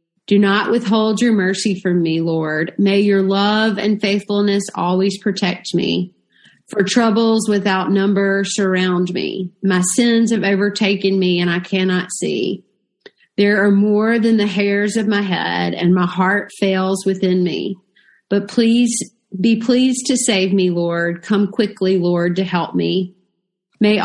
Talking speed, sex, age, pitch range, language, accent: 150 wpm, female, 30-49, 180-210 Hz, English, American